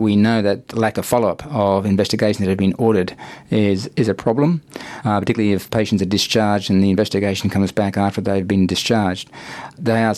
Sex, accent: male, Australian